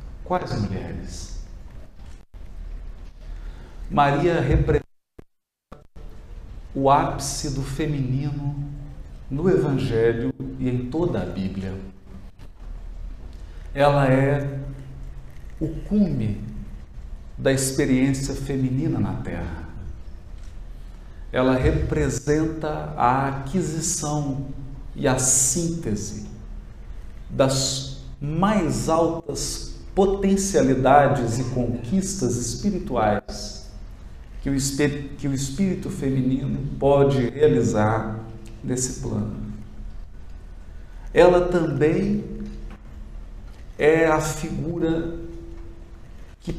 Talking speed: 70 wpm